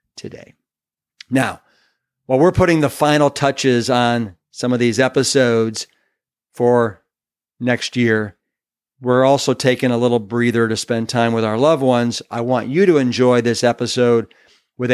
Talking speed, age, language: 150 wpm, 50-69, English